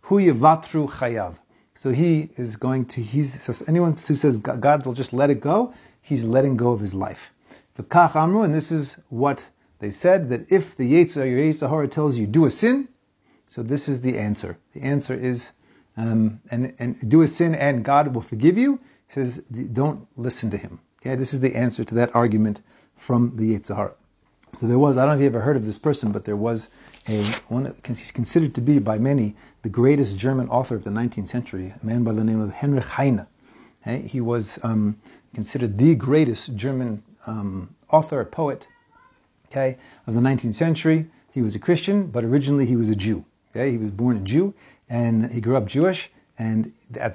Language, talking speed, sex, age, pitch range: English, 195 wpm, male, 40-59, 115-145 Hz